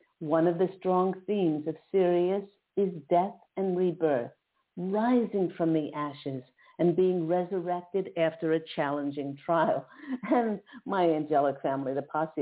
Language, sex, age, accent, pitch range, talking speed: English, female, 50-69, American, 145-185 Hz, 135 wpm